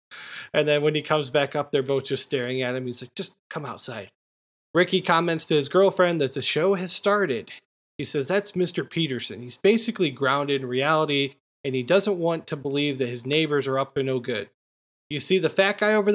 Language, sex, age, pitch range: English, male, 20-39, 140-185 Hz